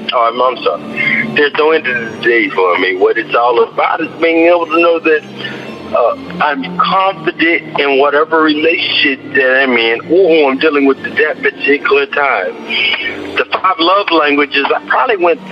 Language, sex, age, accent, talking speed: English, male, 60-79, American, 180 wpm